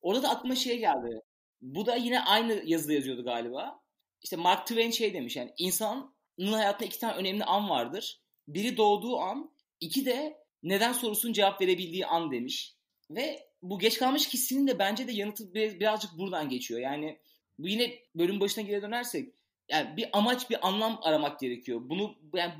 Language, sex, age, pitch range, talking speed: Turkish, male, 30-49, 180-230 Hz, 170 wpm